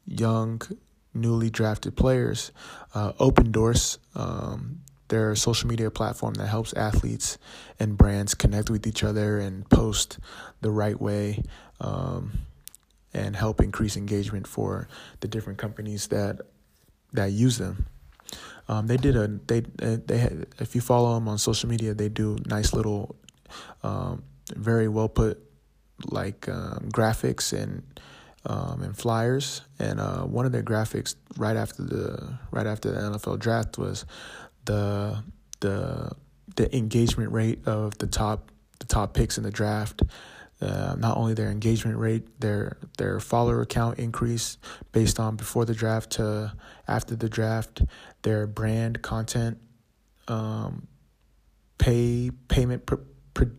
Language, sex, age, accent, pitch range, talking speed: English, male, 20-39, American, 105-120 Hz, 145 wpm